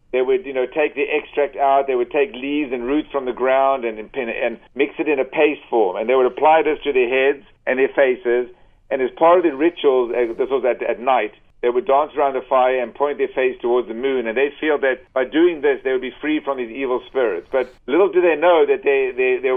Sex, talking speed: male, 265 wpm